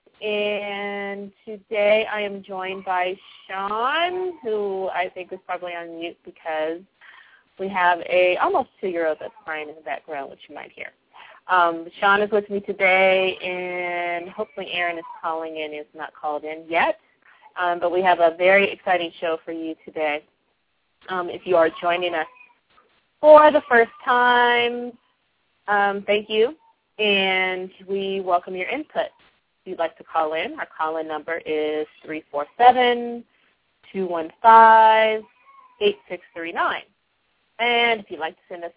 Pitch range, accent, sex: 170-225 Hz, American, female